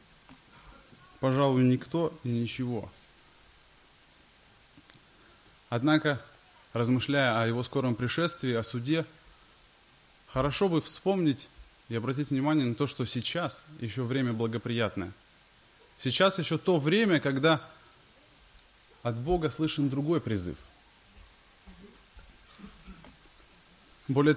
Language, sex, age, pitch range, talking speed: Russian, male, 20-39, 120-155 Hz, 90 wpm